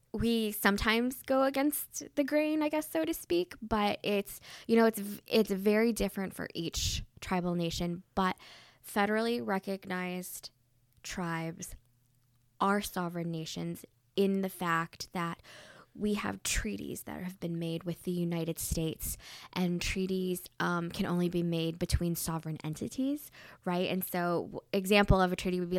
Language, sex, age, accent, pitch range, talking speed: English, female, 10-29, American, 160-195 Hz, 150 wpm